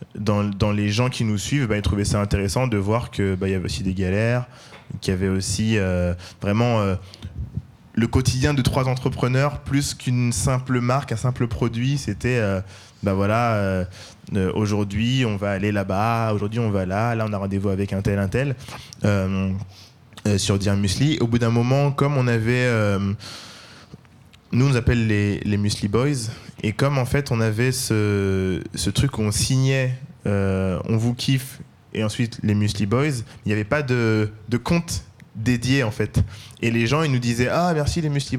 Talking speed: 195 wpm